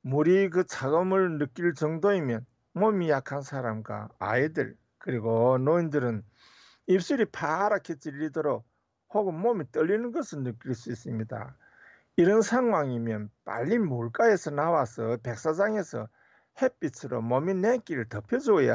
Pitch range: 120-190 Hz